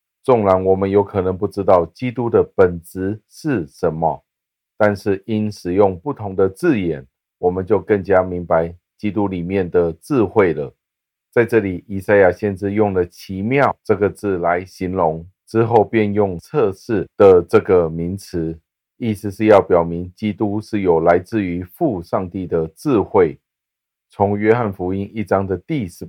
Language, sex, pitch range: Chinese, male, 90-105 Hz